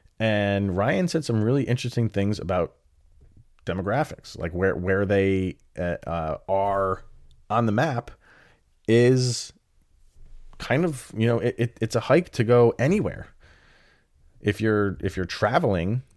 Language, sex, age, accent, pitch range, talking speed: English, male, 30-49, American, 85-120 Hz, 125 wpm